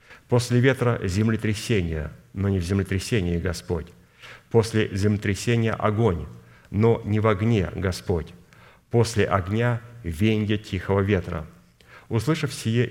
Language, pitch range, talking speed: Russian, 95-110 Hz, 105 wpm